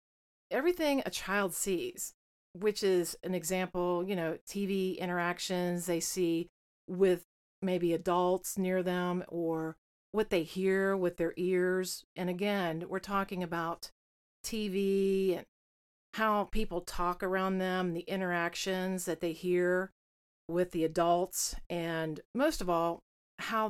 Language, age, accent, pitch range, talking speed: English, 40-59, American, 170-195 Hz, 130 wpm